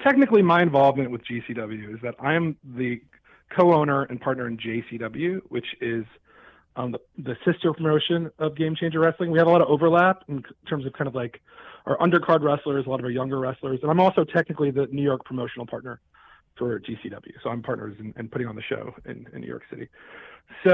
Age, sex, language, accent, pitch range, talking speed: 40-59, male, English, American, 120-155 Hz, 215 wpm